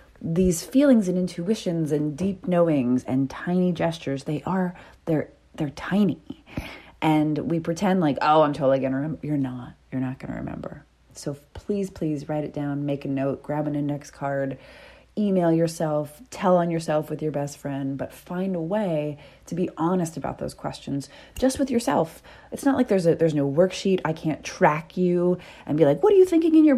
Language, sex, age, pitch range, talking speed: English, female, 30-49, 145-185 Hz, 195 wpm